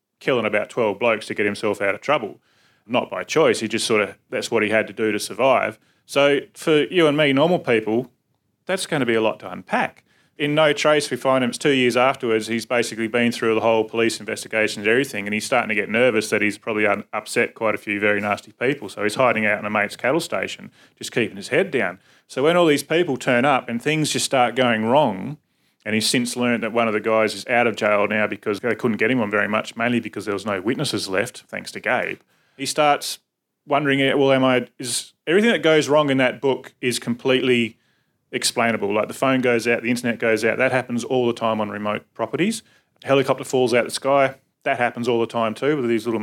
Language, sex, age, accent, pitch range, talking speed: English, male, 30-49, Australian, 110-135 Hz, 240 wpm